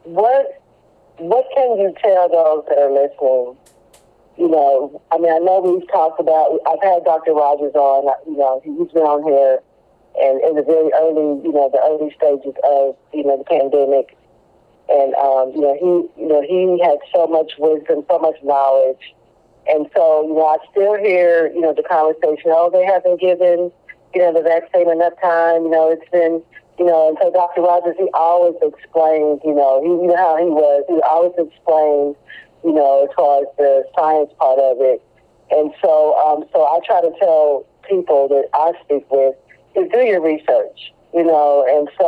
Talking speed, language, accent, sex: 190 wpm, English, American, female